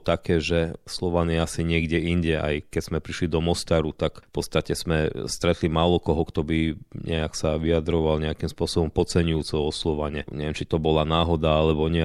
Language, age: Slovak, 40-59